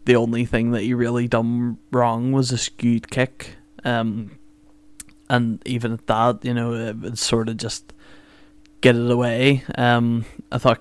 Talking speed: 160 wpm